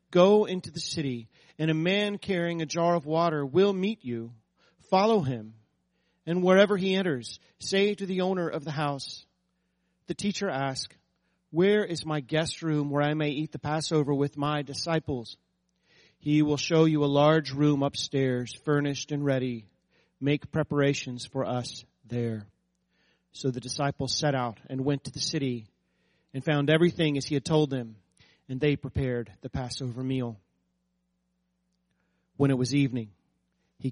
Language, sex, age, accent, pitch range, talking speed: English, male, 40-59, American, 125-155 Hz, 160 wpm